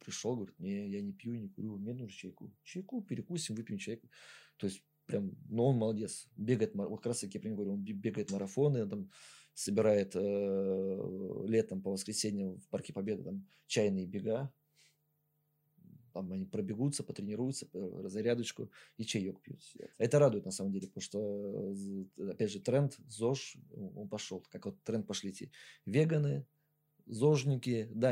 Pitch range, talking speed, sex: 105-145 Hz, 155 wpm, male